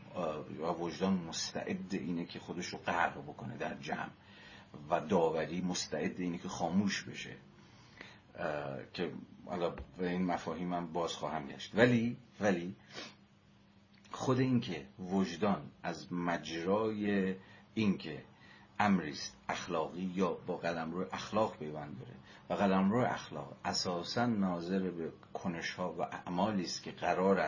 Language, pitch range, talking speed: Persian, 85-100 Hz, 125 wpm